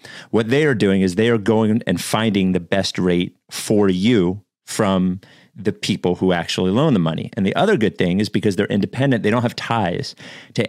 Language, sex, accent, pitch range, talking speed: English, male, American, 95-120 Hz, 210 wpm